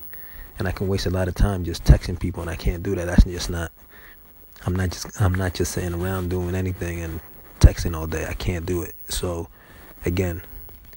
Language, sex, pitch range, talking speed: English, male, 85-95 Hz, 215 wpm